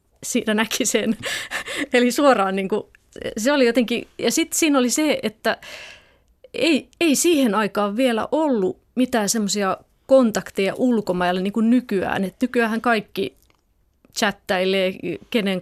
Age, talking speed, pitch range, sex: 30-49, 125 wpm, 195-250 Hz, female